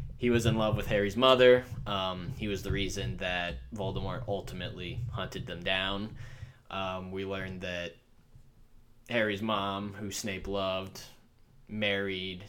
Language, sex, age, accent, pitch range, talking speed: English, male, 10-29, American, 95-120 Hz, 135 wpm